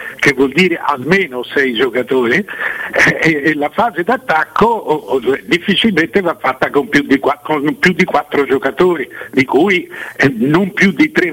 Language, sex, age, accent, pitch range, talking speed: Italian, male, 60-79, native, 135-220 Hz, 170 wpm